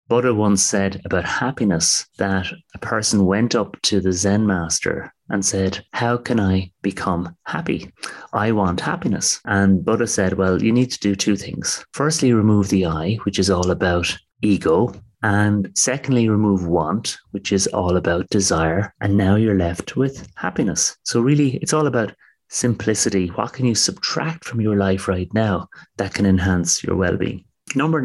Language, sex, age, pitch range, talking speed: English, male, 30-49, 95-120 Hz, 170 wpm